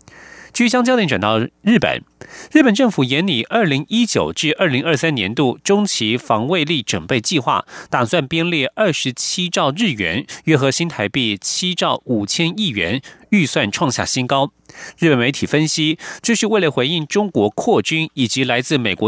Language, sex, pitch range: German, male, 120-175 Hz